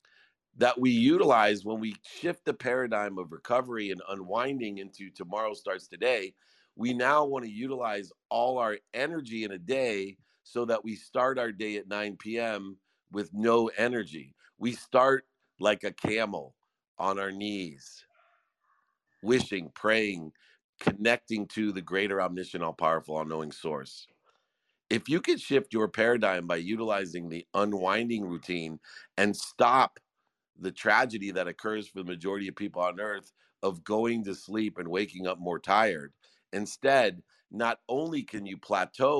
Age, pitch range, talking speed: 50-69, 95-125 Hz, 145 wpm